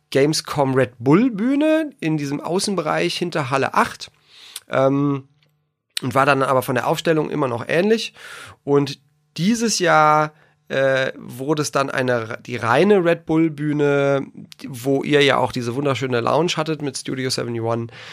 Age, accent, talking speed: 30-49, German, 135 wpm